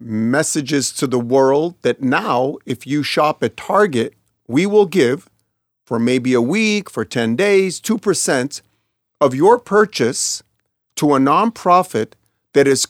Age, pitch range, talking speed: 40-59, 130-190 Hz, 140 wpm